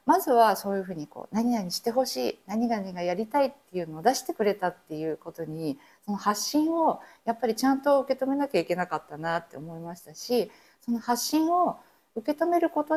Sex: female